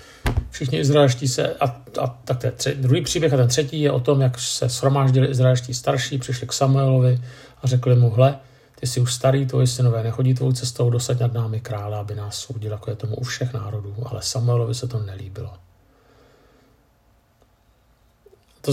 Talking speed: 185 wpm